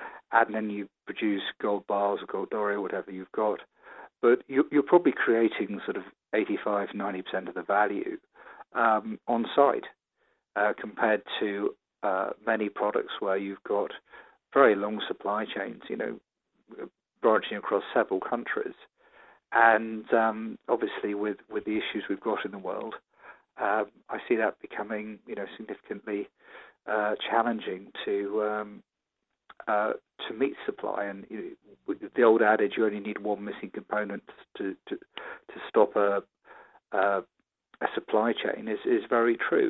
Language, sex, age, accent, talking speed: English, male, 40-59, British, 150 wpm